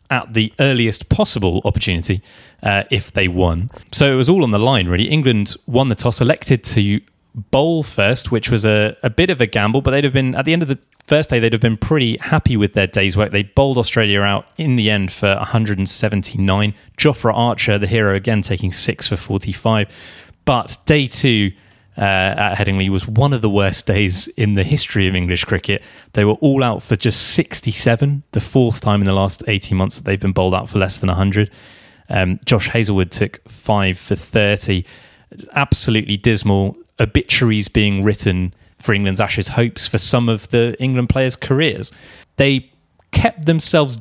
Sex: male